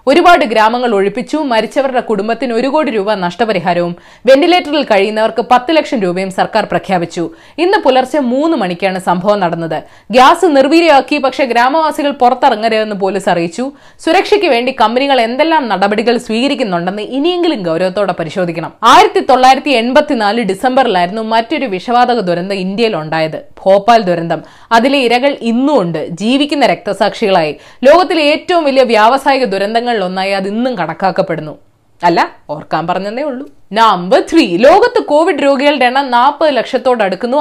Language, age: Malayalam, 20-39